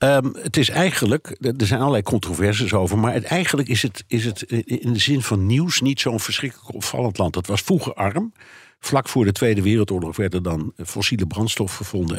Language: Dutch